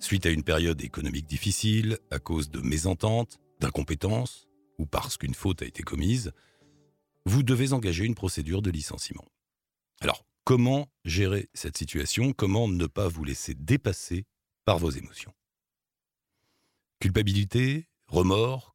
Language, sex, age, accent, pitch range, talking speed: French, male, 50-69, French, 80-115 Hz, 130 wpm